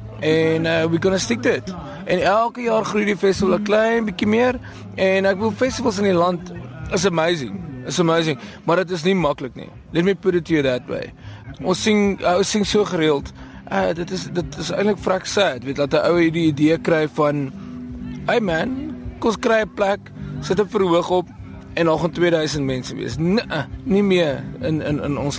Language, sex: English, male